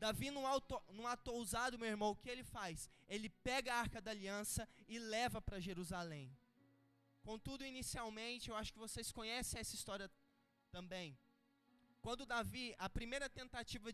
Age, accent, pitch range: 20-39, Brazilian, 190-235 Hz